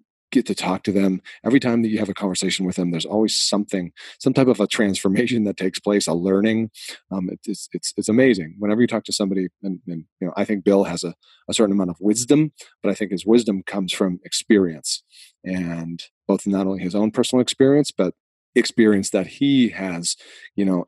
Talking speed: 215 wpm